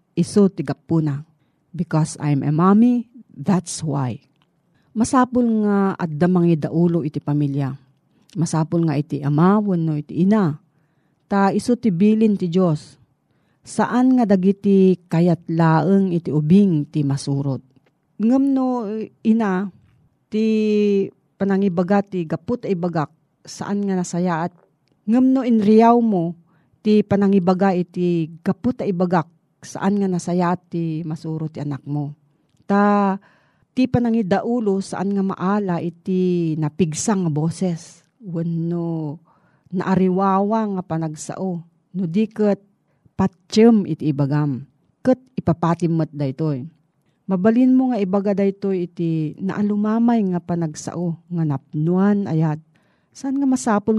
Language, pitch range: Filipino, 155-200 Hz